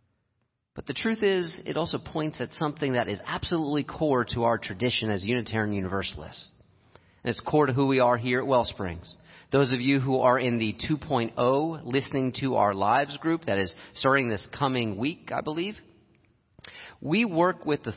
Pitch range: 105-135 Hz